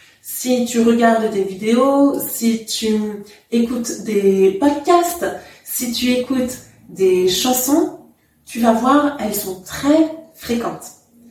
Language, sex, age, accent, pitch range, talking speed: English, female, 30-49, French, 225-290 Hz, 115 wpm